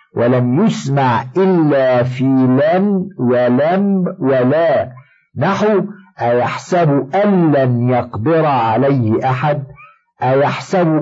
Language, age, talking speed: Arabic, 50-69, 80 wpm